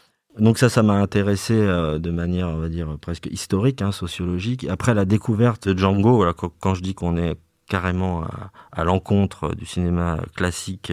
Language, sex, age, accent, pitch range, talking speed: French, male, 30-49, French, 85-105 Hz, 170 wpm